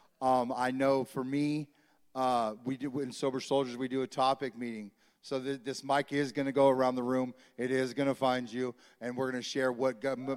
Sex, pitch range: male, 120-130 Hz